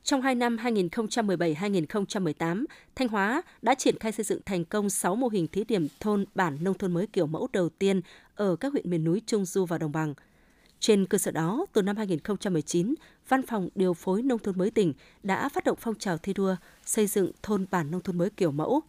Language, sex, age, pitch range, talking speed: Vietnamese, female, 20-39, 175-225 Hz, 215 wpm